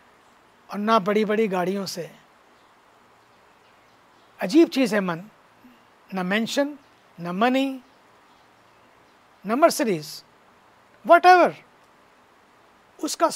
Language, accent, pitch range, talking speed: English, Indian, 210-280 Hz, 80 wpm